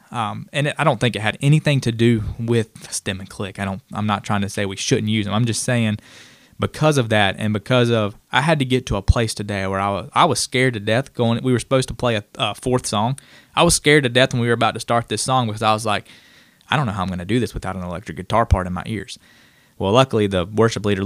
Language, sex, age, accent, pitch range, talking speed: English, male, 20-39, American, 105-125 Hz, 285 wpm